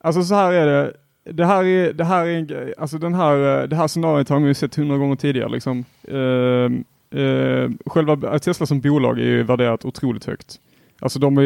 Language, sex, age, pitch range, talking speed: Swedish, male, 30-49, 120-140 Hz, 200 wpm